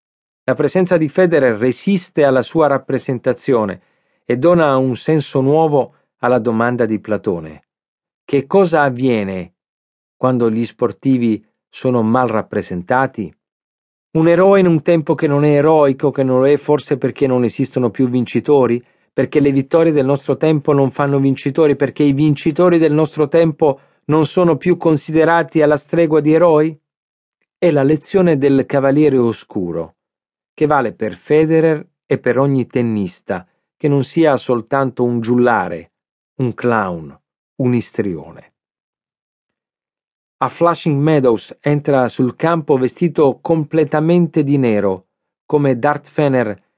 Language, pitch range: Italian, 125-155 Hz